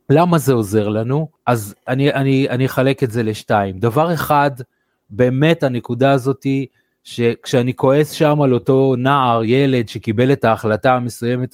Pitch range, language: 120-150 Hz, Hebrew